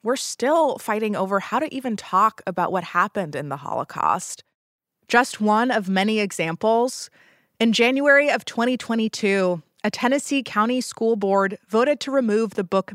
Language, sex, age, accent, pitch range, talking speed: English, female, 20-39, American, 185-240 Hz, 155 wpm